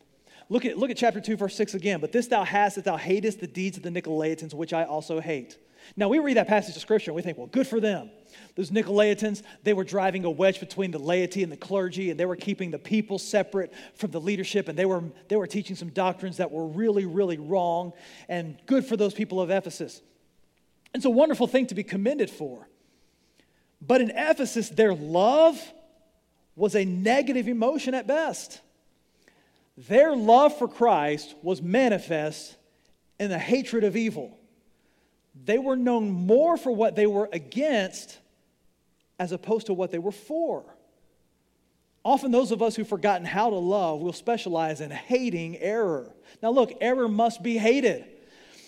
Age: 40-59